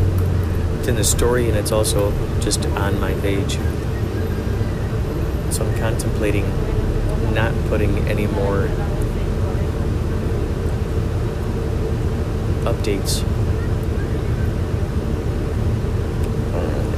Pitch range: 90-110 Hz